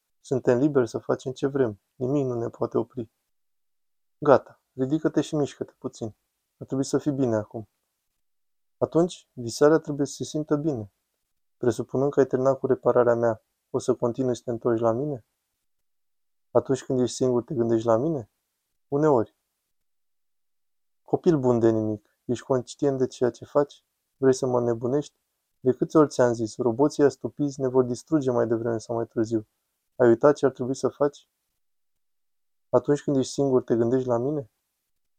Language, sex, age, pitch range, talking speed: Romanian, male, 20-39, 115-145 Hz, 165 wpm